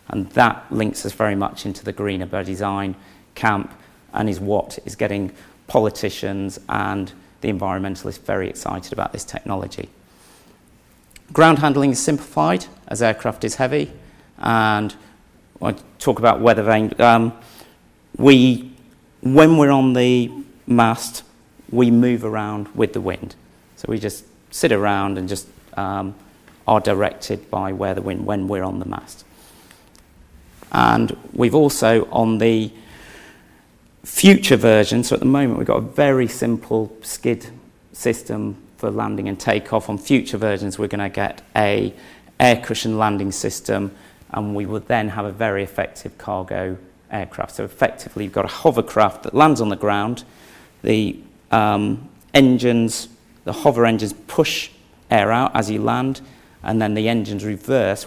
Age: 40-59